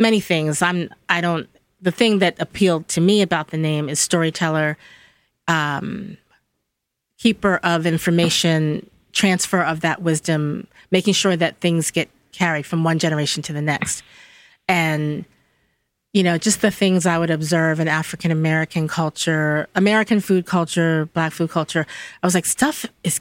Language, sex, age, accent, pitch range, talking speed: English, female, 30-49, American, 160-190 Hz, 155 wpm